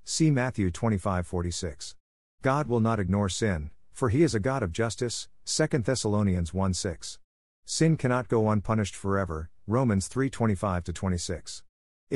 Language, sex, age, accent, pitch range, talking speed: English, male, 50-69, American, 90-115 Hz, 125 wpm